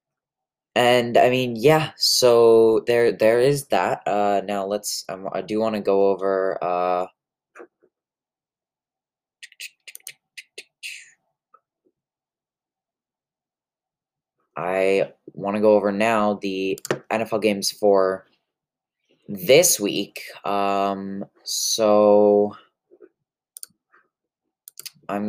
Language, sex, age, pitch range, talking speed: English, male, 20-39, 95-110 Hz, 85 wpm